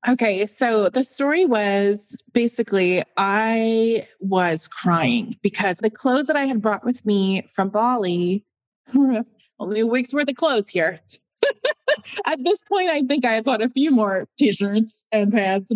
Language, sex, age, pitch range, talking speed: English, female, 20-39, 185-245 Hz, 155 wpm